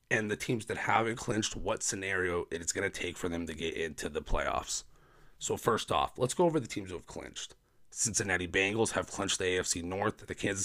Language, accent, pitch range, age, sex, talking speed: English, American, 100-130 Hz, 30-49, male, 220 wpm